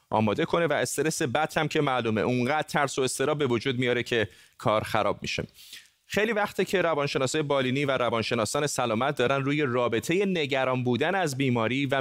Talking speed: 175 wpm